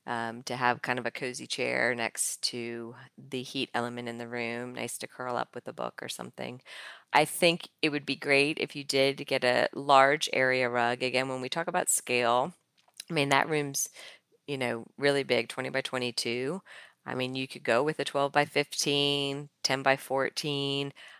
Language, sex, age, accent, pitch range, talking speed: English, female, 40-59, American, 130-145 Hz, 195 wpm